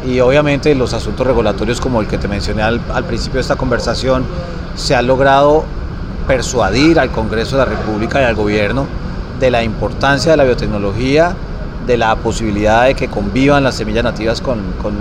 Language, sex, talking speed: Spanish, male, 180 wpm